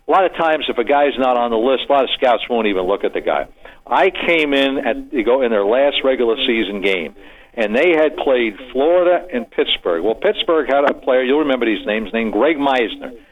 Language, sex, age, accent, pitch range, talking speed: English, male, 60-79, American, 130-180 Hz, 235 wpm